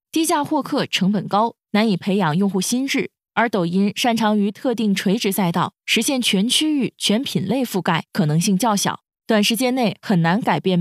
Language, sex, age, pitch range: Chinese, female, 20-39, 180-255 Hz